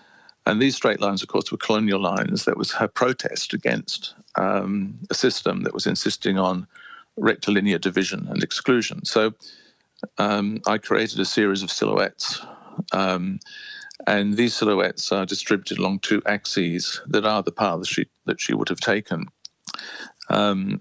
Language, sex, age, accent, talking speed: English, male, 50-69, British, 155 wpm